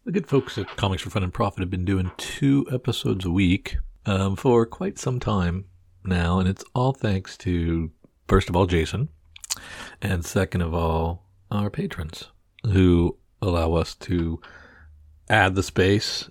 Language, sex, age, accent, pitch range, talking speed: English, male, 40-59, American, 85-105 Hz, 160 wpm